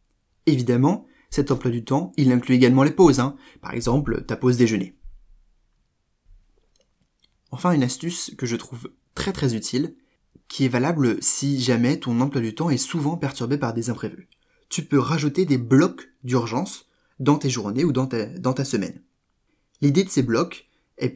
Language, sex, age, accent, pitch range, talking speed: French, male, 20-39, French, 120-160 Hz, 170 wpm